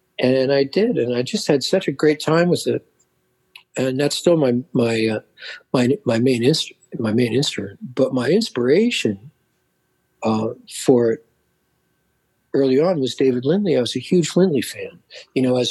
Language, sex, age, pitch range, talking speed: English, male, 60-79, 115-155 Hz, 175 wpm